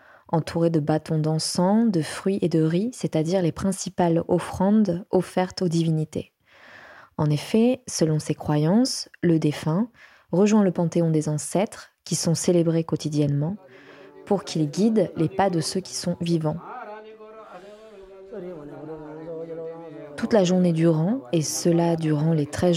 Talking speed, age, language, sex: 135 wpm, 20-39, French, female